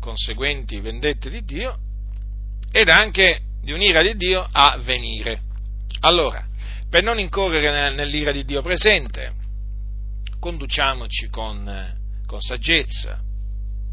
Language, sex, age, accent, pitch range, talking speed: Italian, male, 40-59, native, 100-130 Hz, 105 wpm